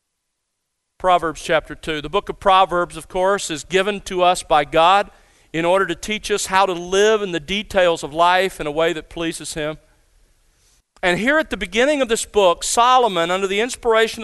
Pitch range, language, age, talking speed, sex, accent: 160-205 Hz, English, 40-59, 195 wpm, male, American